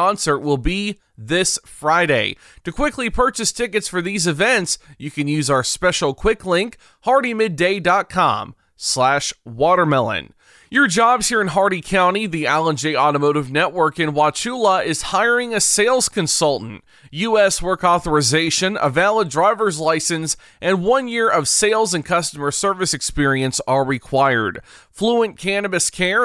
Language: English